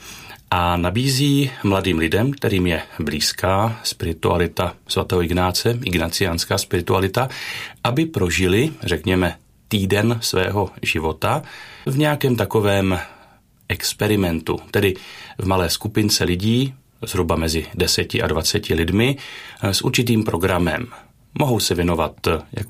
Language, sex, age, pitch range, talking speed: Czech, male, 40-59, 90-110 Hz, 105 wpm